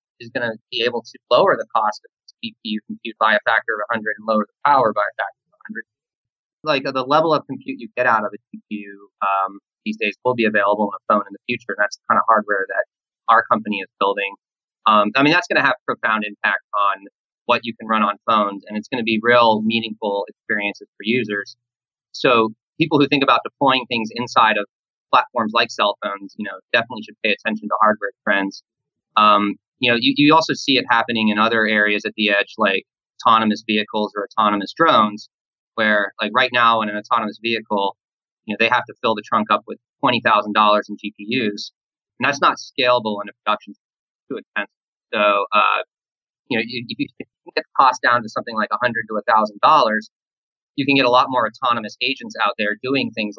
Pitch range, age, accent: 105-125 Hz, 30-49, American